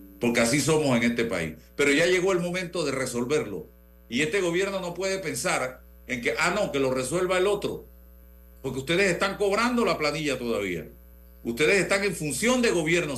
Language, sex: Spanish, male